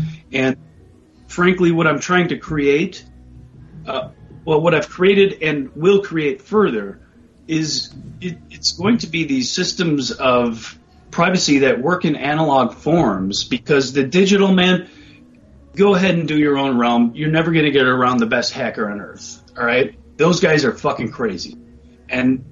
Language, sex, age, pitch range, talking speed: English, male, 30-49, 120-175 Hz, 155 wpm